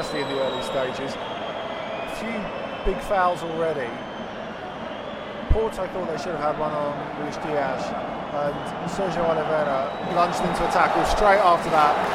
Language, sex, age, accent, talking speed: English, male, 20-39, British, 150 wpm